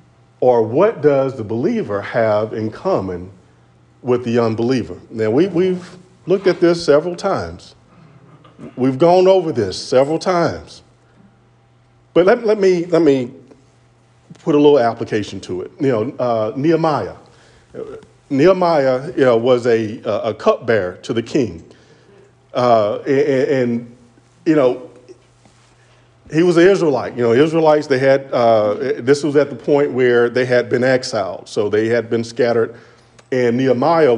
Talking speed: 145 wpm